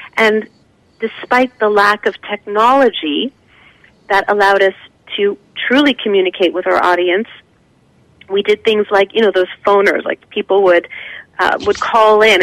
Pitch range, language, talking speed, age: 200-240 Hz, English, 145 wpm, 40-59